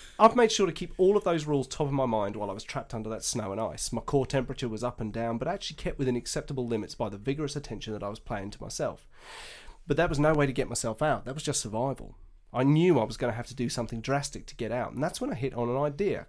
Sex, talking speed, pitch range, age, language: male, 295 wpm, 110-145 Hz, 30-49, English